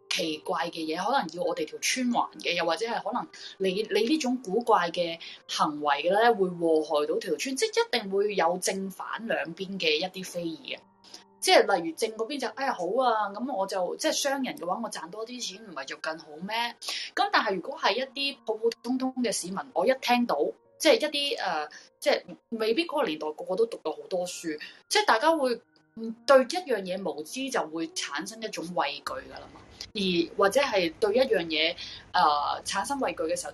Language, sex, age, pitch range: Chinese, female, 20-39, 175-265 Hz